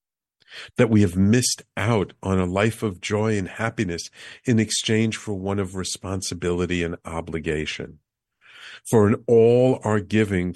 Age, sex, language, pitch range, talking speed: 50-69, male, English, 90-110 Hz, 140 wpm